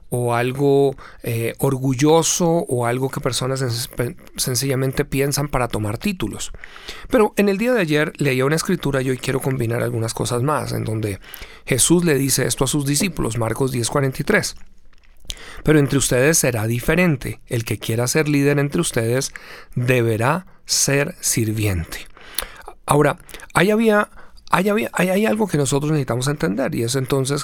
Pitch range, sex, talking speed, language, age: 120-160 Hz, male, 155 wpm, Spanish, 40-59